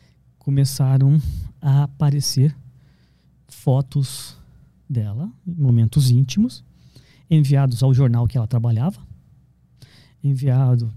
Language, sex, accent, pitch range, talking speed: Portuguese, male, Brazilian, 125-175 Hz, 75 wpm